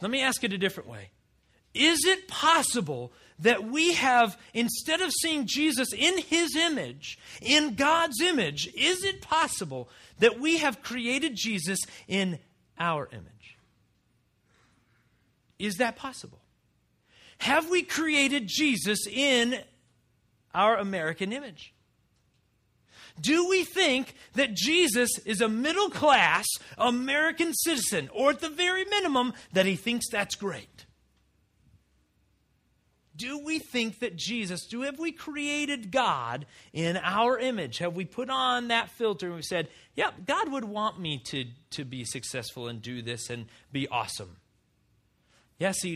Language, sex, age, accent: English, male, 40-59, American